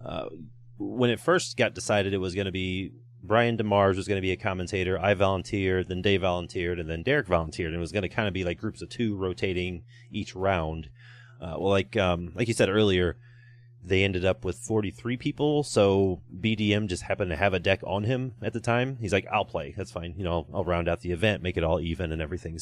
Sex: male